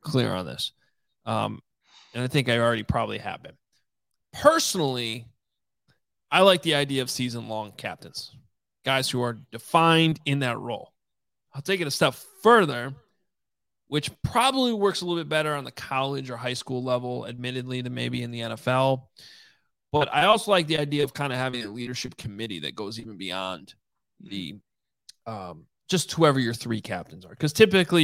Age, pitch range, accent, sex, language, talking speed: 20-39, 115-155 Hz, American, male, English, 175 wpm